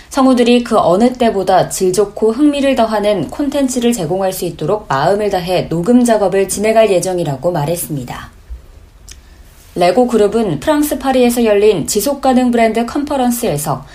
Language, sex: Korean, female